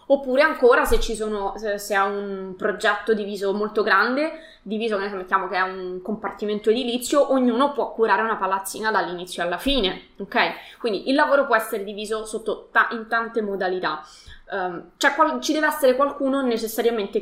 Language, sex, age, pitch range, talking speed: Italian, female, 20-39, 200-245 Hz, 170 wpm